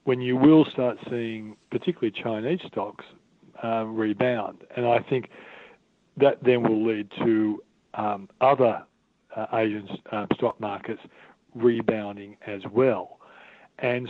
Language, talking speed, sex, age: English, 125 wpm, male, 50-69